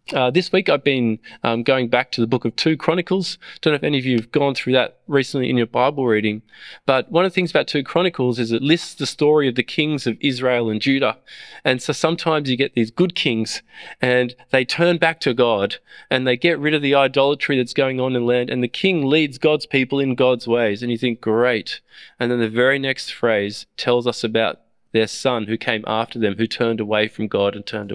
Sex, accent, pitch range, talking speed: male, Australian, 115-150 Hz, 240 wpm